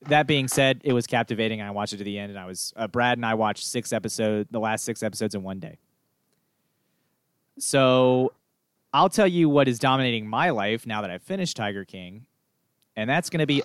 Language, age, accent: English, 30-49, American